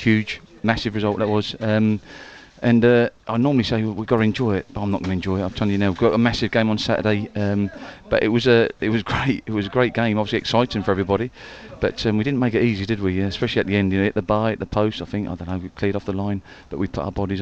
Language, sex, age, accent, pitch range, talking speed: English, male, 40-59, British, 95-110 Hz, 305 wpm